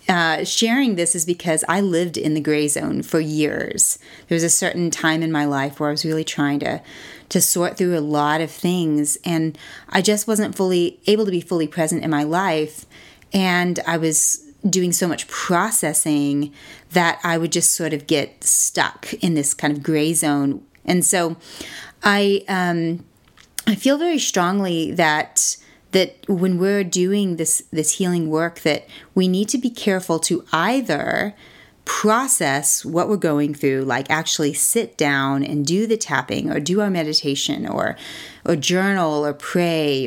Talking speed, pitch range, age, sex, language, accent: 170 wpm, 155-185 Hz, 30-49, female, English, American